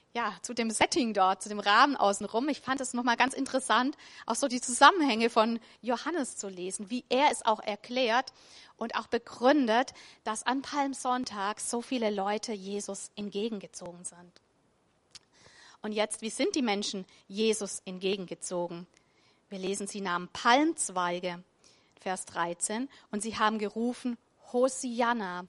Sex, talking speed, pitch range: female, 140 wpm, 195-240 Hz